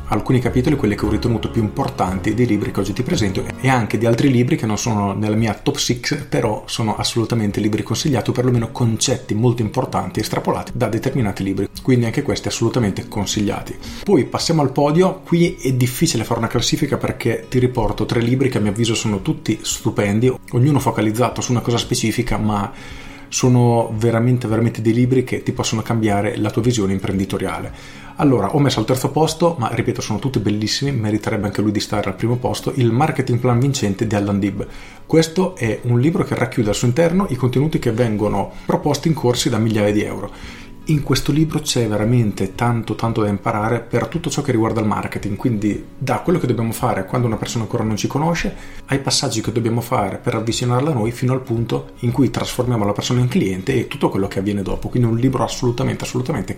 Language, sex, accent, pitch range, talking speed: Italian, male, native, 105-130 Hz, 205 wpm